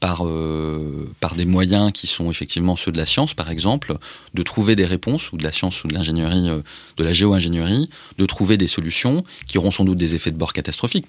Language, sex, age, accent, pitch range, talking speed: French, male, 30-49, French, 85-115 Hz, 225 wpm